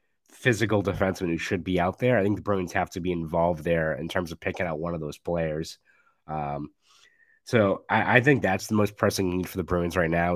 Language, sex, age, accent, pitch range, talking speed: English, male, 20-39, American, 90-105 Hz, 230 wpm